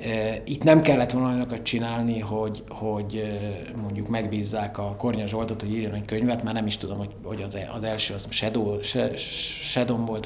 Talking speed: 150 wpm